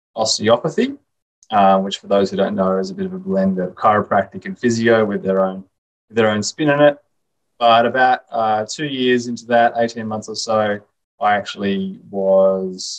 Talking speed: 185 wpm